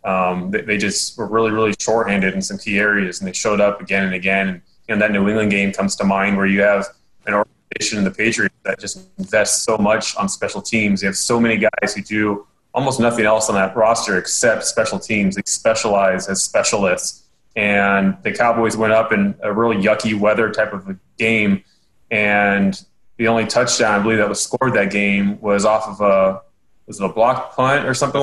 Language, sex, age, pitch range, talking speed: English, male, 20-39, 100-115 Hz, 215 wpm